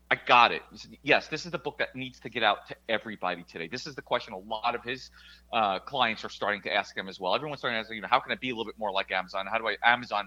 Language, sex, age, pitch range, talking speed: English, male, 30-49, 95-135 Hz, 310 wpm